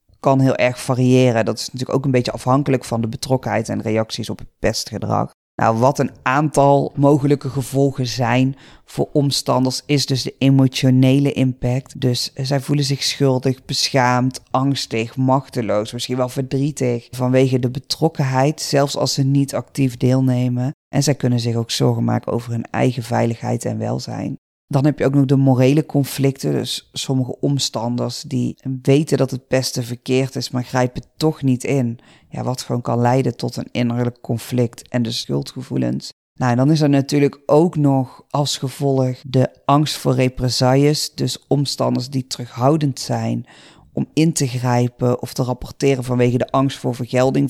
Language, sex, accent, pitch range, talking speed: Dutch, female, Dutch, 125-140 Hz, 165 wpm